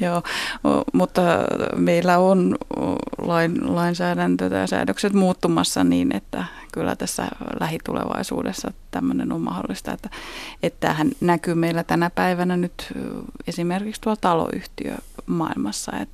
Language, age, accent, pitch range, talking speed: Finnish, 30-49, native, 165-225 Hz, 105 wpm